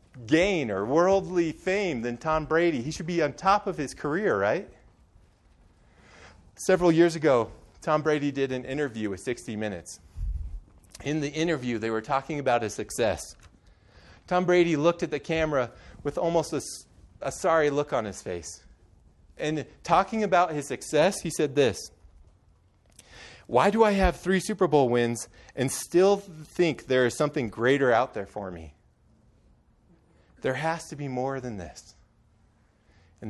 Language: English